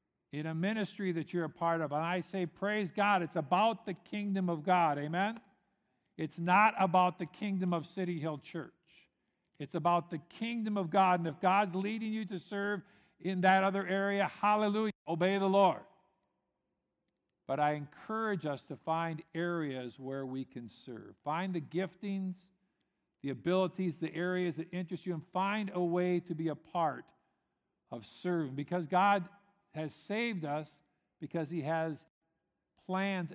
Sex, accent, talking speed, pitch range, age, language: male, American, 160 wpm, 160-200 Hz, 50-69, English